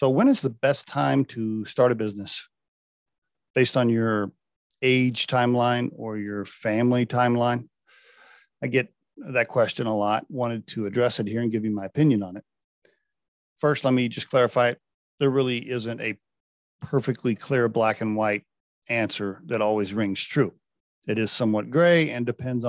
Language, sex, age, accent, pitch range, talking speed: English, male, 40-59, American, 110-140 Hz, 165 wpm